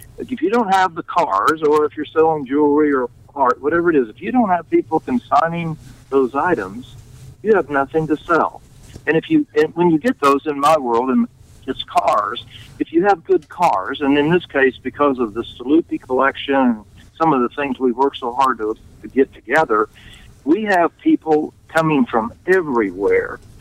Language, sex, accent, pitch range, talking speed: English, male, American, 125-170 Hz, 190 wpm